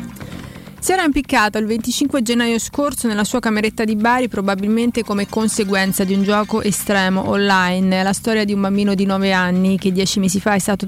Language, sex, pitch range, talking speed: Italian, female, 195-225 Hz, 190 wpm